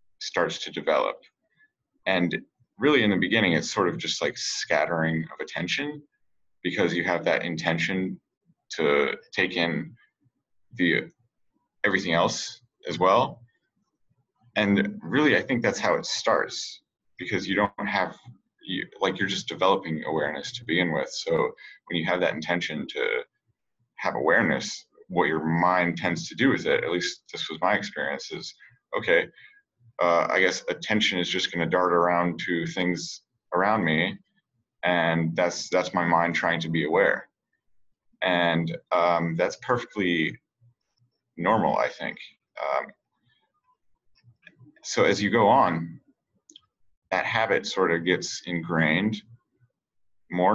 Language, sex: English, male